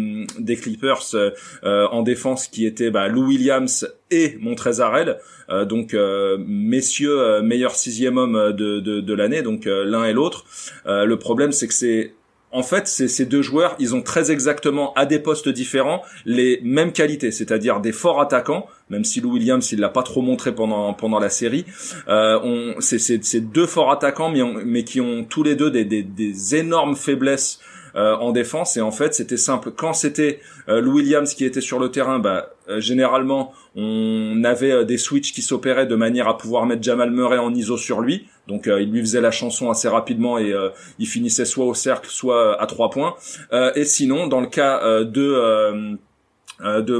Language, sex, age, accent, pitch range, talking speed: French, male, 30-49, French, 115-145 Hz, 205 wpm